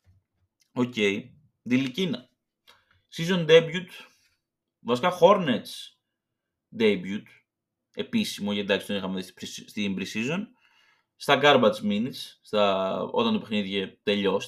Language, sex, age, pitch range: Greek, male, 20-39, 120-190 Hz